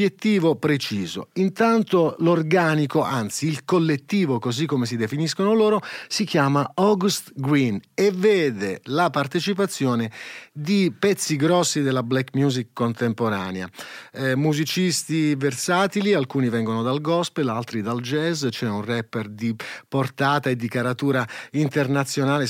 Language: Italian